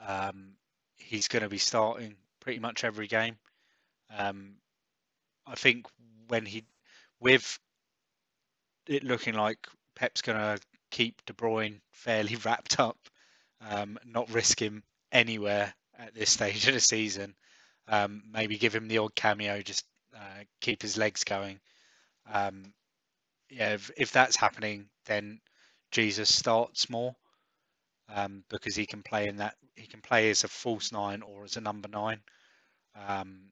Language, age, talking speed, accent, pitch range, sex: English, 20-39, 145 wpm, British, 105-115 Hz, male